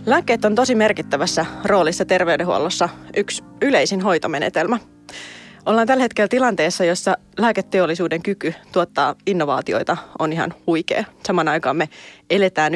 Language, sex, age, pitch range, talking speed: Finnish, female, 20-39, 165-200 Hz, 120 wpm